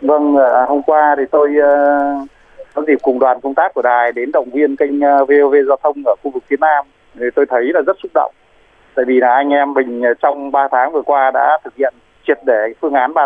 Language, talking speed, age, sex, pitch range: Vietnamese, 230 wpm, 20-39, male, 125-145 Hz